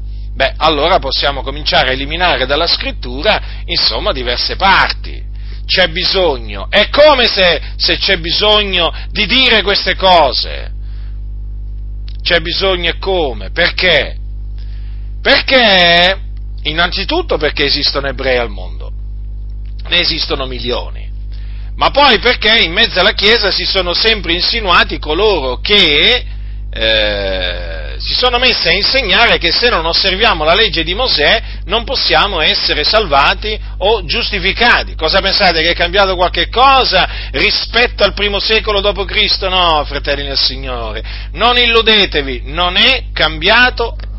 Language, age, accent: Italian, 40-59, native